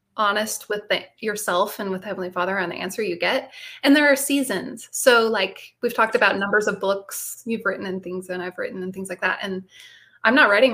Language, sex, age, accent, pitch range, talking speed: English, female, 20-39, American, 190-235 Hz, 225 wpm